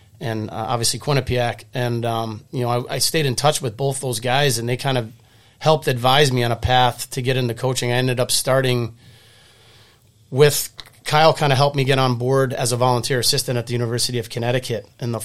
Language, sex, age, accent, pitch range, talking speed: English, male, 30-49, American, 115-130 Hz, 215 wpm